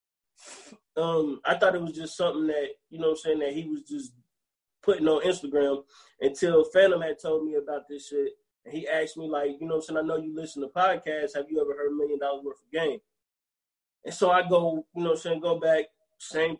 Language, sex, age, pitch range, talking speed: English, male, 20-39, 145-185 Hz, 240 wpm